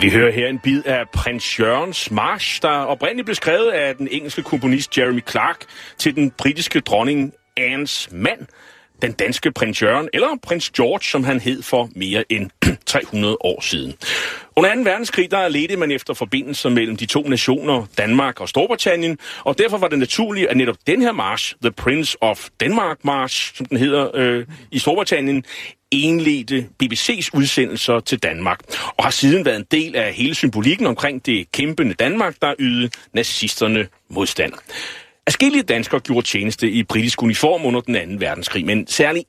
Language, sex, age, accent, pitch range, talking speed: Danish, male, 40-59, native, 120-155 Hz, 170 wpm